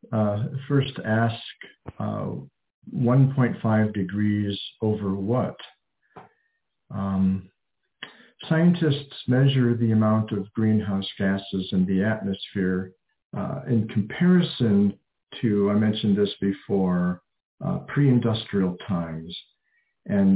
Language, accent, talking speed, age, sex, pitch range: English, American, 100 wpm, 50-69, male, 95-120 Hz